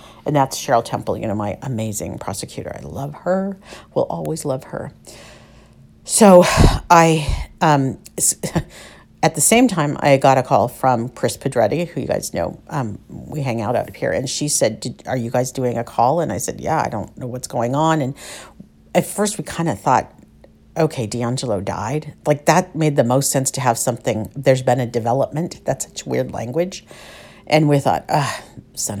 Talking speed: 190 wpm